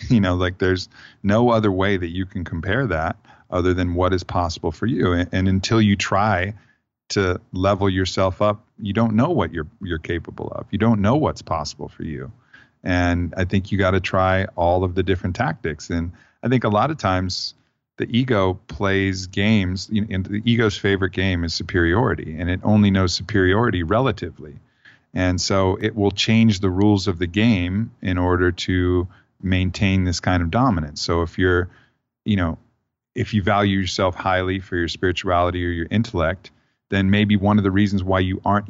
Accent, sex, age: American, male, 40-59